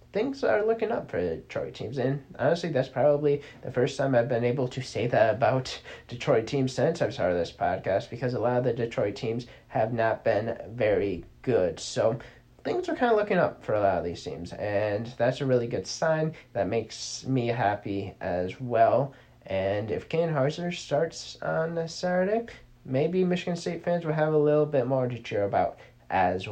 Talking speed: 195 wpm